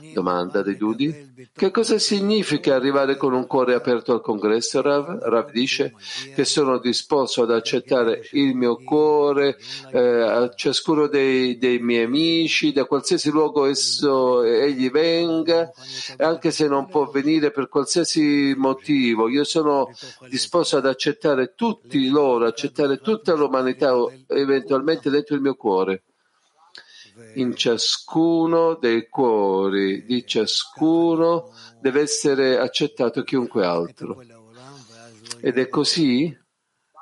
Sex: male